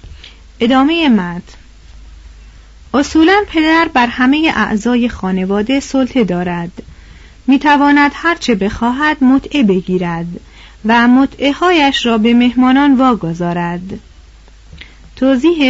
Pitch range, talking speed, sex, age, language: 215-285 Hz, 90 wpm, female, 40-59, Persian